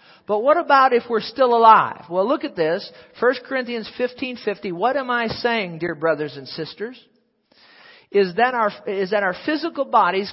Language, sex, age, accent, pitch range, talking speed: English, male, 50-69, American, 200-245 Hz, 175 wpm